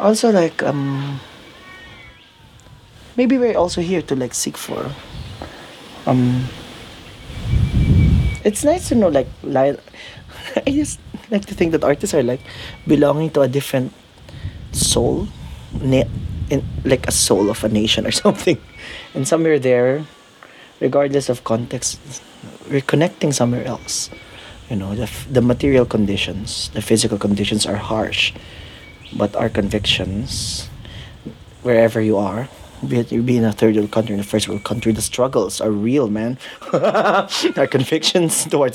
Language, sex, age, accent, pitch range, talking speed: English, male, 30-49, Filipino, 110-140 Hz, 140 wpm